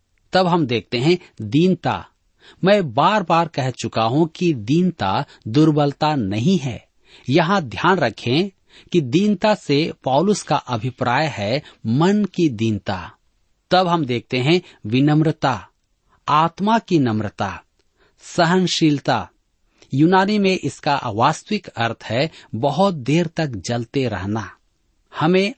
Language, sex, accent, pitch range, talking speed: Hindi, male, native, 120-175 Hz, 115 wpm